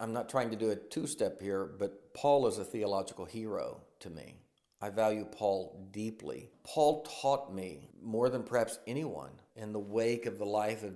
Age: 50-69